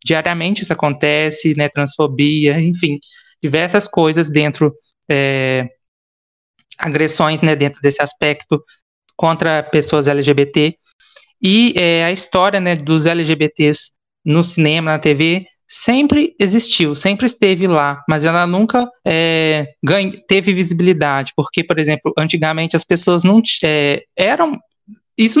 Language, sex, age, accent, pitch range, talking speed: Portuguese, male, 20-39, Brazilian, 150-195 Hz, 125 wpm